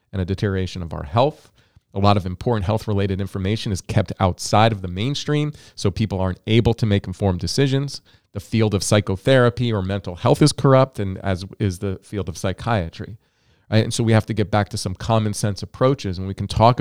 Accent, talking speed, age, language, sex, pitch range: American, 205 wpm, 40-59, English, male, 95-120 Hz